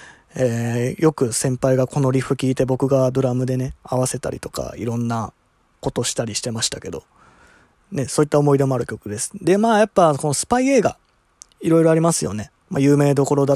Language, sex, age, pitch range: Japanese, male, 20-39, 115-150 Hz